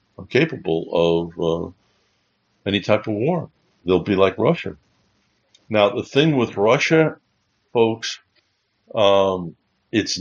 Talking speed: 110 wpm